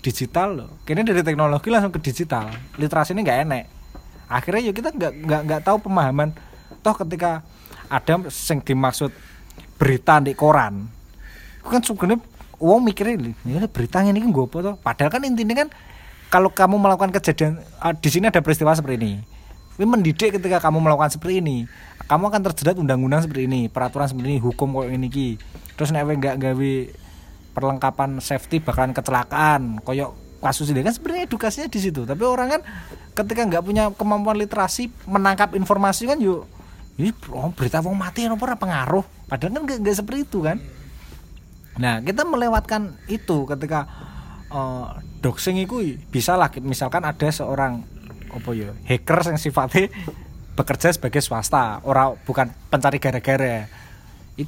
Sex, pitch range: male, 130-195 Hz